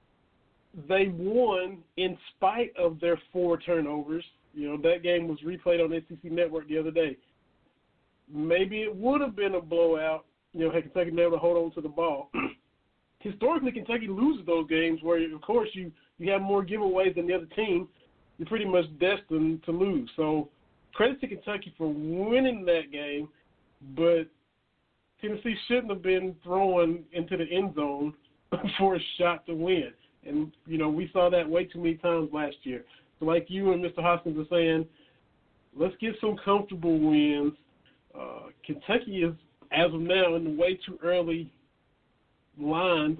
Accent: American